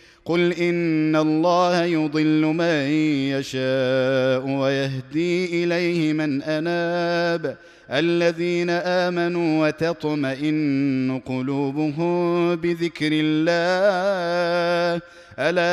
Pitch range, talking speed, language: 150-175 Hz, 65 wpm, Arabic